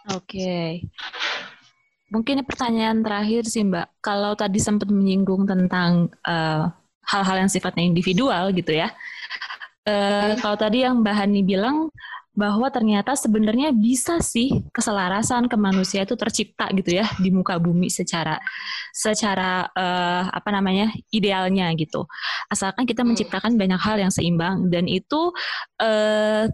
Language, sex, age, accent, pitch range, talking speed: Indonesian, female, 20-39, native, 190-225 Hz, 125 wpm